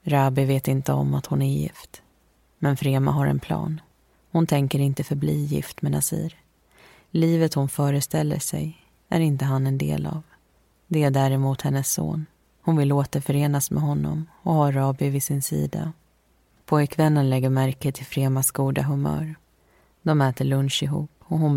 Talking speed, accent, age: 165 wpm, native, 30-49